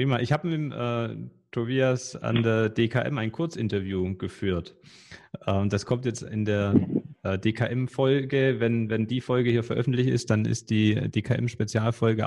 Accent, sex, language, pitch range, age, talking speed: German, male, German, 110-135 Hz, 30-49, 145 wpm